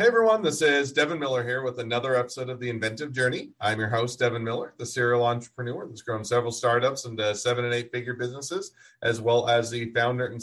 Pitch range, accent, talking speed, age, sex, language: 105-125 Hz, American, 215 wpm, 40-59, male, English